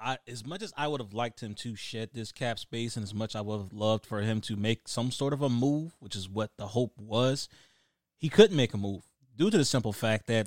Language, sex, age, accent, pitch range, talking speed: English, male, 30-49, American, 115-155 Hz, 270 wpm